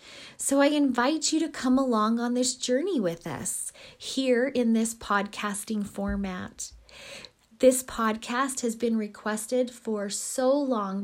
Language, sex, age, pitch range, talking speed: English, female, 20-39, 210-260 Hz, 135 wpm